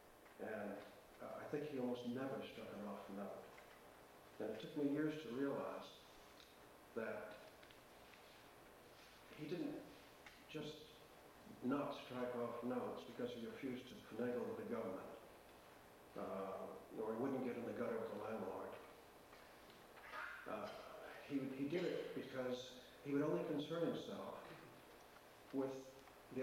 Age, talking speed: 50-69, 130 wpm